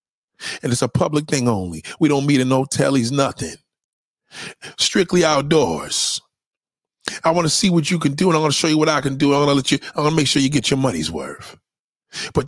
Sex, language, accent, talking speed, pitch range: male, English, American, 210 wpm, 140-215 Hz